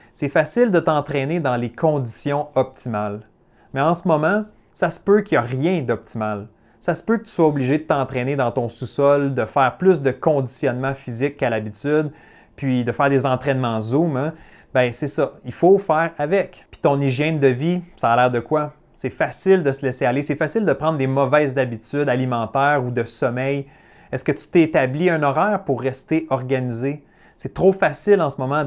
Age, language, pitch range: 30-49, French, 130-165 Hz